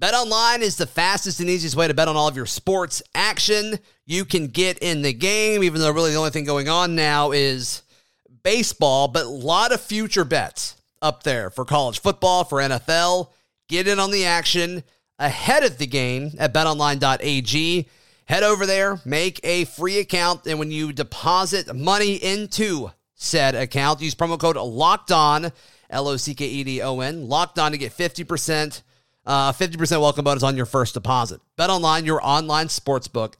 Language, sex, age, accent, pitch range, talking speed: English, male, 30-49, American, 140-180 Hz, 170 wpm